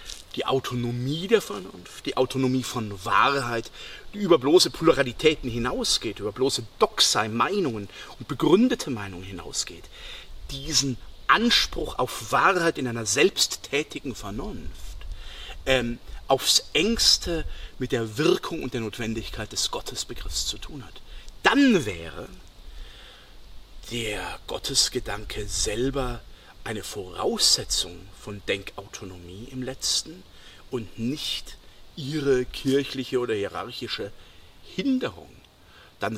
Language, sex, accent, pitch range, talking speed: German, male, German, 100-135 Hz, 100 wpm